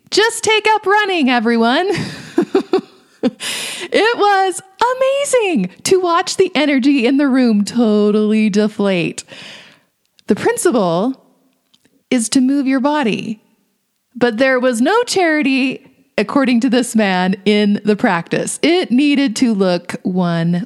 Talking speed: 120 wpm